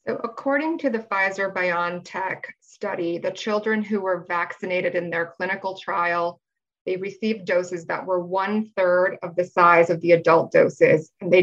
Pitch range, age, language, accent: 175-195 Hz, 20-39, English, American